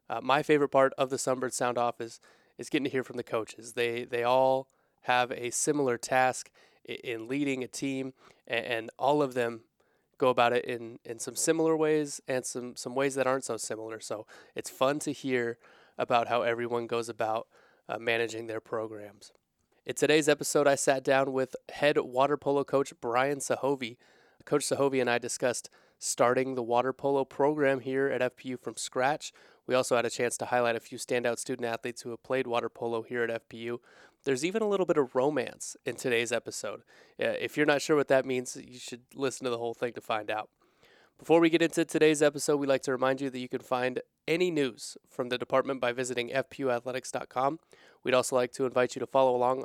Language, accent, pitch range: English, American, 120-140 Hz